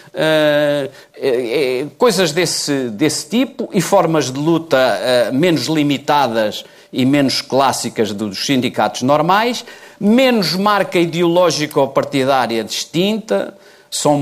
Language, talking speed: Portuguese, 95 wpm